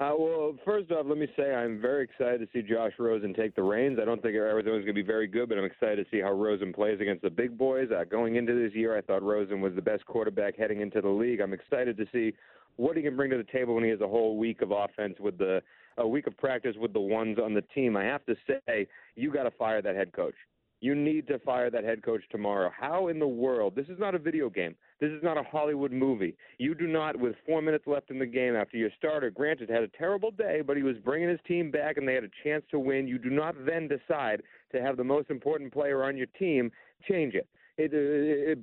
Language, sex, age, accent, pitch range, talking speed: English, male, 40-59, American, 115-150 Hz, 265 wpm